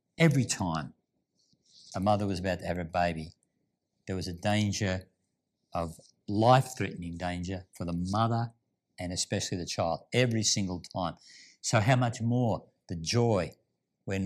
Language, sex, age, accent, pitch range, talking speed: English, male, 50-69, Australian, 95-120 Hz, 145 wpm